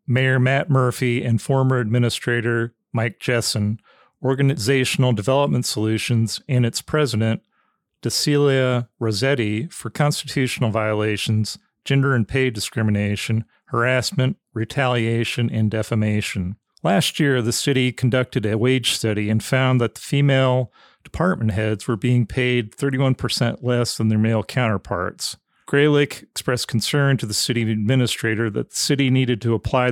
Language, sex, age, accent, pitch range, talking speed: English, male, 40-59, American, 110-130 Hz, 130 wpm